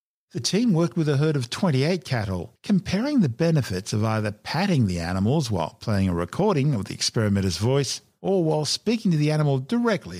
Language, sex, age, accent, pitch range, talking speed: English, male, 50-69, Australian, 105-145 Hz, 190 wpm